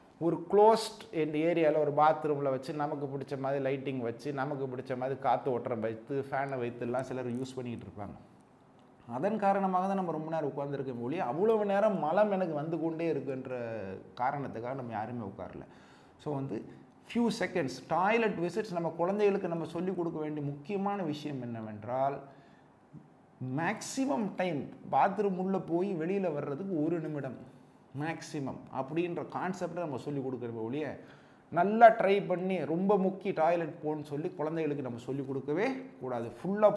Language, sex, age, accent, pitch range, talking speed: Tamil, male, 30-49, native, 135-185 Hz, 140 wpm